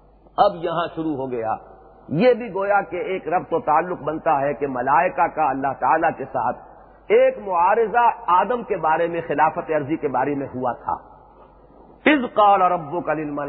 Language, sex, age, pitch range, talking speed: English, male, 50-69, 155-235 Hz, 160 wpm